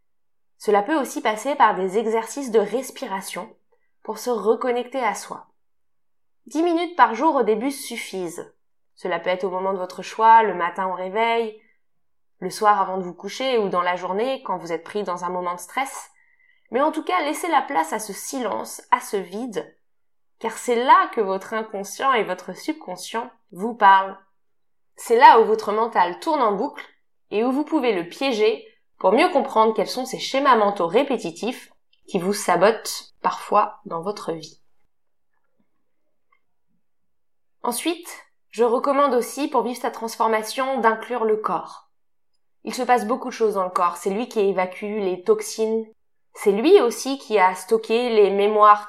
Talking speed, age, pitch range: 170 wpm, 20-39, 205-275 Hz